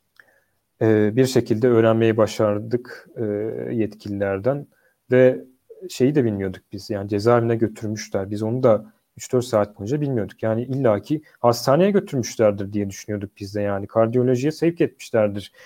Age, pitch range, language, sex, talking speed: 40-59, 105-150 Hz, Turkish, male, 125 wpm